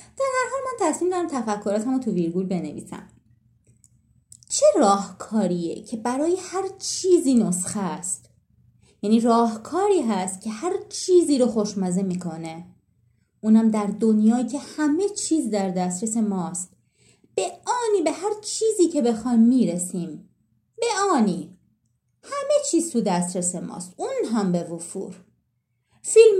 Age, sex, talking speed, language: 30-49, female, 130 wpm, Persian